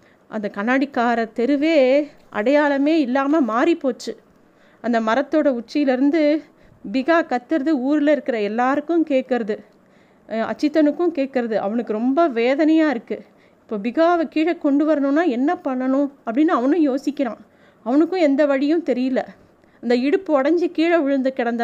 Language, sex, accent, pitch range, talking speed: Tamil, female, native, 240-310 Hz, 115 wpm